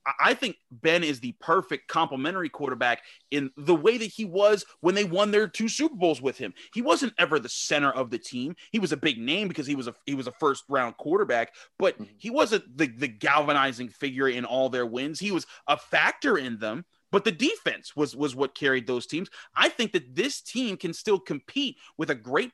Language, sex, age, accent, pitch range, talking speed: English, male, 30-49, American, 130-195 Hz, 220 wpm